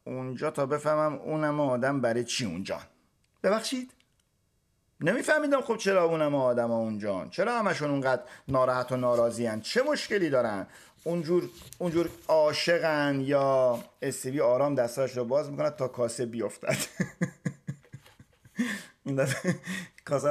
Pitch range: 125-195 Hz